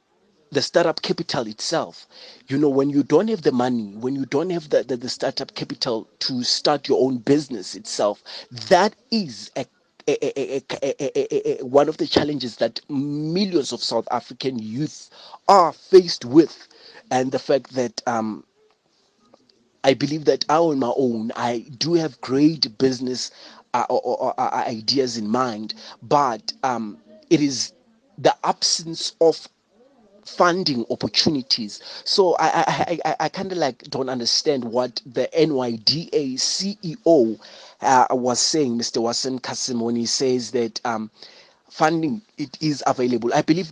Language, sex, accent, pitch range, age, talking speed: English, male, South African, 125-185 Hz, 30-49, 155 wpm